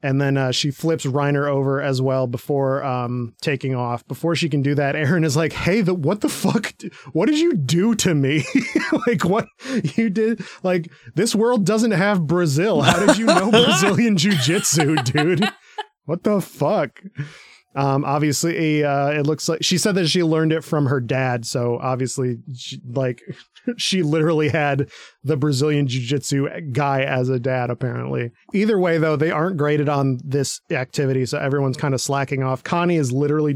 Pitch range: 135-165 Hz